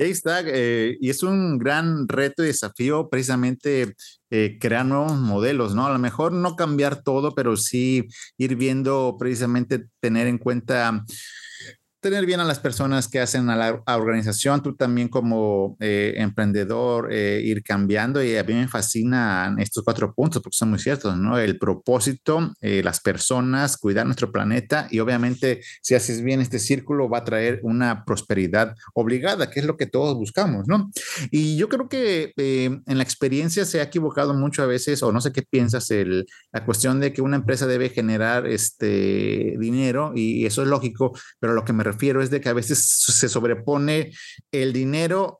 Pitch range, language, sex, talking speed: 115-140 Hz, Spanish, male, 180 wpm